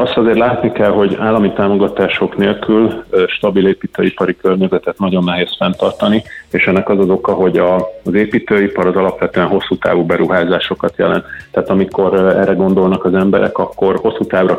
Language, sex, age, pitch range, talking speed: Hungarian, male, 30-49, 90-100 Hz, 150 wpm